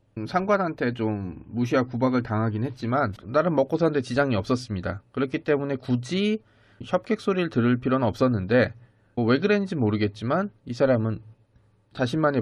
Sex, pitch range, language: male, 110-145 Hz, Korean